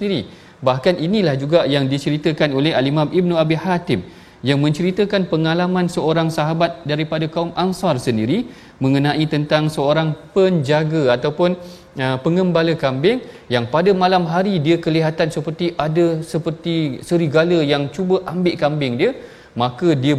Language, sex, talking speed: Malayalam, male, 135 wpm